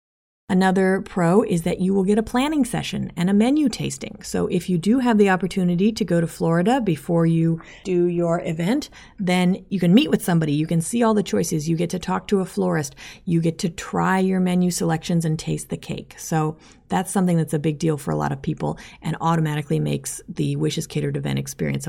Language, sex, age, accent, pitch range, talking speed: English, female, 30-49, American, 160-195 Hz, 220 wpm